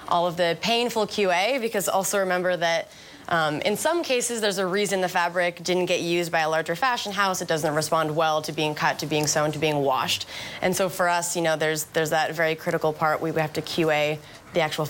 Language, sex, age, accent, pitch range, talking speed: English, female, 20-39, American, 155-185 Hz, 230 wpm